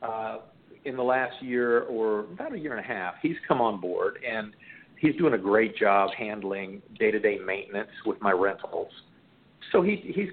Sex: male